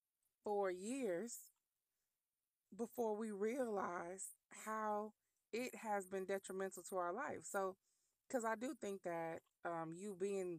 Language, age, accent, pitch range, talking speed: English, 20-39, American, 165-200 Hz, 125 wpm